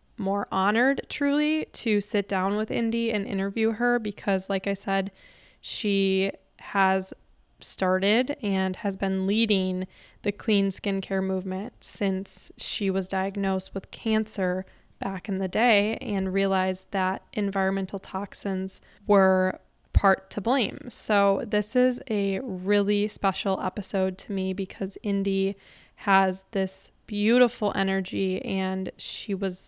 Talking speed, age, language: 125 wpm, 10-29, English